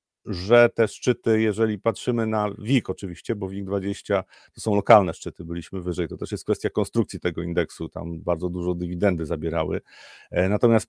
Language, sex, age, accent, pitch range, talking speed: Polish, male, 40-59, native, 100-115 Hz, 165 wpm